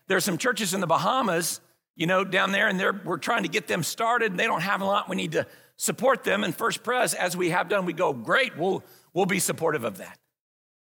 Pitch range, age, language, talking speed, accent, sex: 200-260 Hz, 50-69, English, 250 wpm, American, male